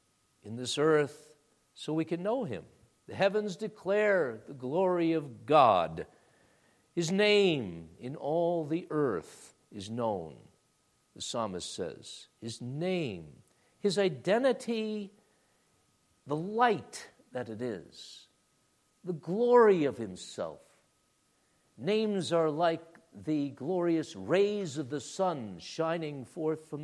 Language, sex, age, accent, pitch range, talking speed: English, male, 60-79, American, 125-185 Hz, 115 wpm